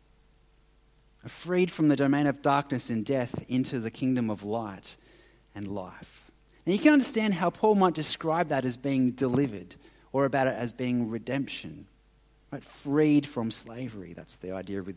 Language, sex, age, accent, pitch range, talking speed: English, male, 30-49, Australian, 130-185 Hz, 165 wpm